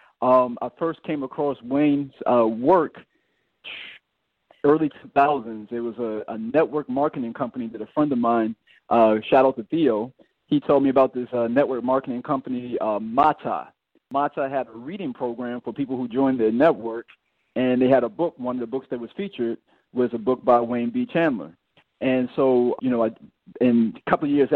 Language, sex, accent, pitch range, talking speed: English, male, American, 120-145 Hz, 190 wpm